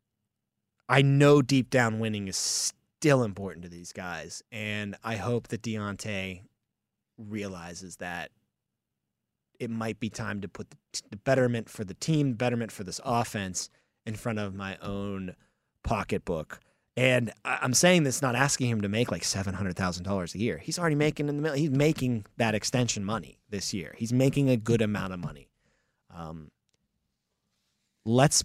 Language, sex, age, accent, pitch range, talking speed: English, male, 30-49, American, 105-140 Hz, 155 wpm